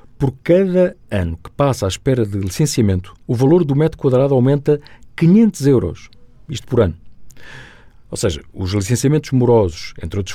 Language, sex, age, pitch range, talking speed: Portuguese, male, 50-69, 105-140 Hz, 155 wpm